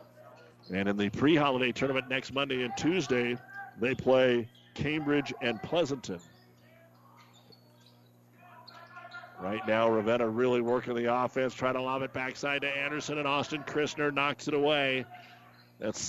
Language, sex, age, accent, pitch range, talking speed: English, male, 50-69, American, 115-140 Hz, 130 wpm